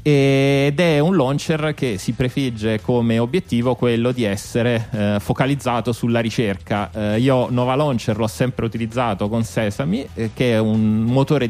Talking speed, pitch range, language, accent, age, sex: 155 wpm, 105-125 Hz, Italian, native, 30-49, male